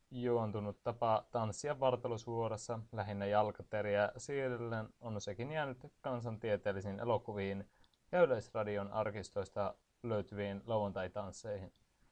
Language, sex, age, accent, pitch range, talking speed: Finnish, male, 30-49, native, 105-125 Hz, 85 wpm